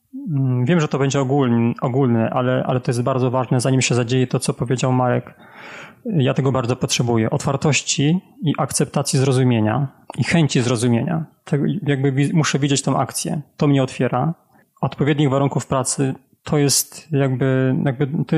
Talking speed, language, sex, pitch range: 155 wpm, Polish, male, 125-150 Hz